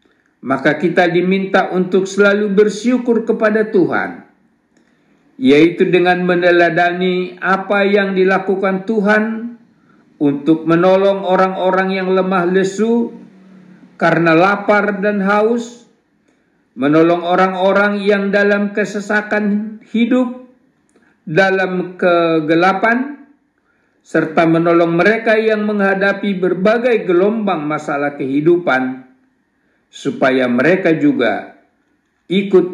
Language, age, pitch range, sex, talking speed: Indonesian, 50-69, 170-215 Hz, male, 85 wpm